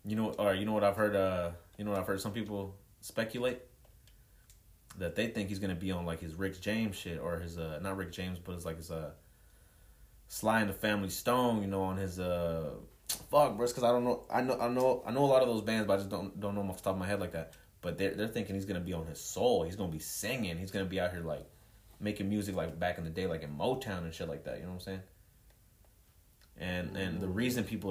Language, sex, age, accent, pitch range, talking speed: English, male, 20-39, American, 85-105 Hz, 275 wpm